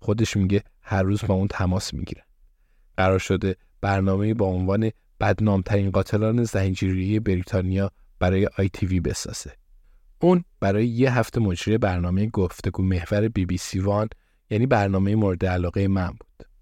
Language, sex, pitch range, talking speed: Persian, male, 95-110 Hz, 150 wpm